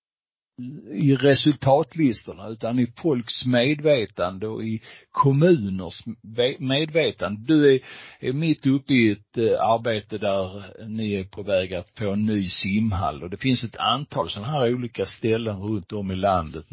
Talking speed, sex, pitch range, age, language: 145 wpm, male, 90-115 Hz, 60-79, Swedish